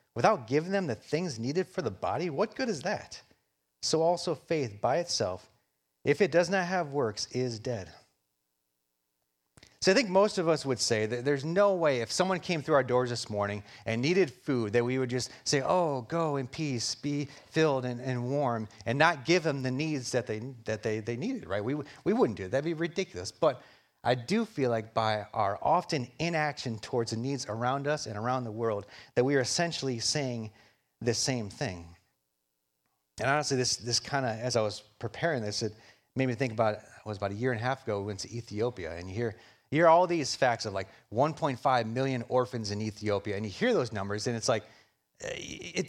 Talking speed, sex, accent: 215 wpm, male, American